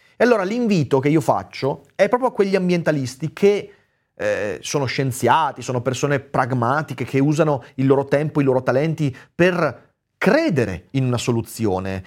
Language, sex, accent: Italian, male, native